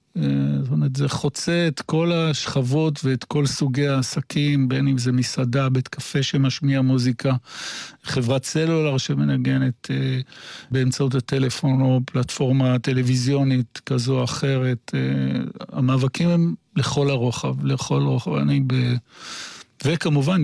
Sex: male